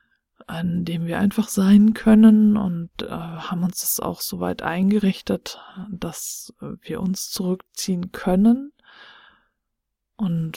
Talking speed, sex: 115 wpm, female